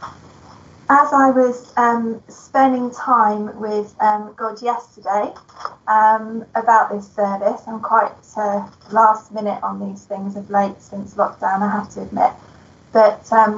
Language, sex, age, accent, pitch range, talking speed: English, female, 20-39, British, 210-235 Hz, 140 wpm